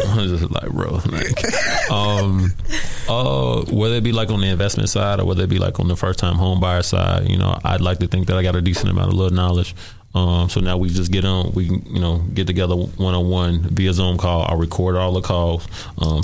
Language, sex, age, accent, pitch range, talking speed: English, male, 20-39, American, 85-95 Hz, 240 wpm